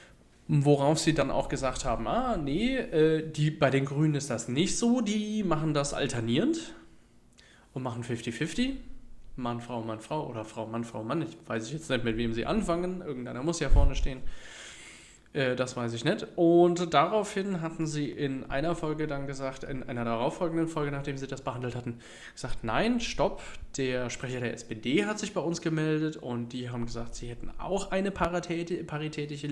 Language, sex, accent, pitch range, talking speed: German, male, German, 120-165 Hz, 175 wpm